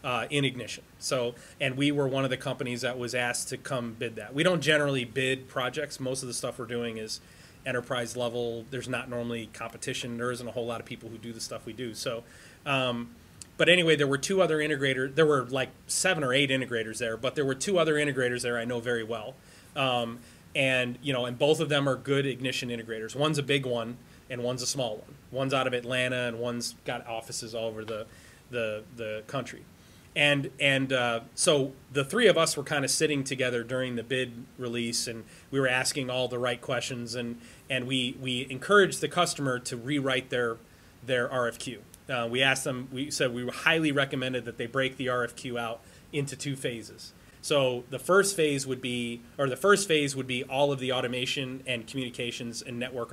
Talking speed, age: 210 wpm, 30-49